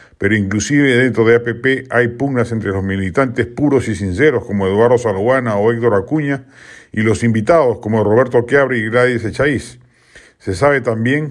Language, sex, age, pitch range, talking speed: Spanish, male, 50-69, 110-135 Hz, 165 wpm